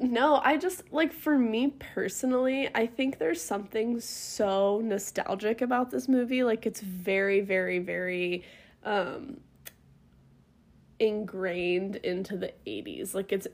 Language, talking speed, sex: English, 125 wpm, female